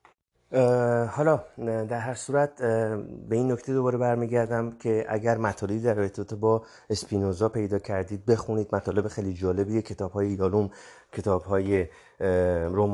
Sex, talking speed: male, 115 wpm